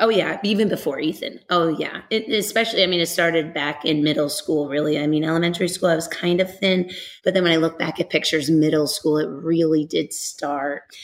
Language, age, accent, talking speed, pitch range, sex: English, 30-49, American, 215 wpm, 165-215 Hz, female